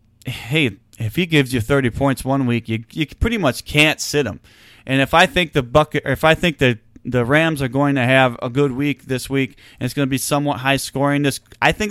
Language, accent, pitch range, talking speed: English, American, 115-145 Hz, 245 wpm